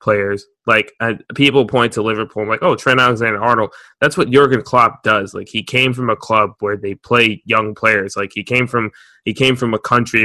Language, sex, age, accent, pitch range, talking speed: English, male, 20-39, American, 105-120 Hz, 220 wpm